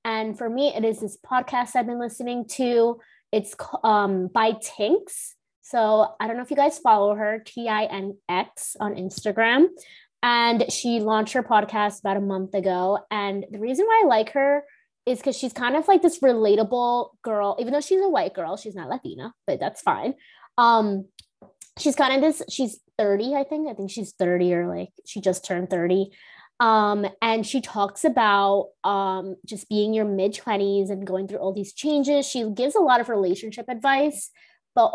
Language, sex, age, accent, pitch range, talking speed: English, female, 20-39, American, 200-255 Hz, 185 wpm